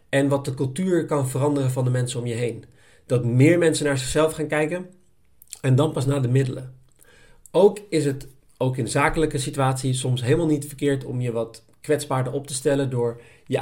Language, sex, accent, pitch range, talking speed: Dutch, male, Dutch, 130-160 Hz, 200 wpm